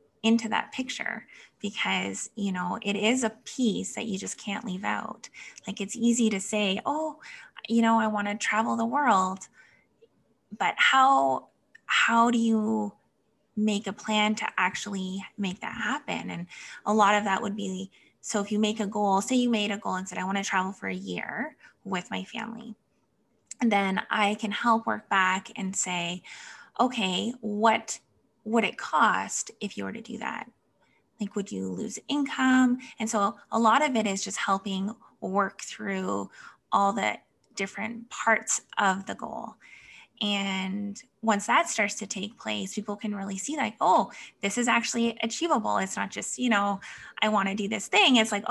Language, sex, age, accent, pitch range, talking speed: English, female, 20-39, American, 195-230 Hz, 180 wpm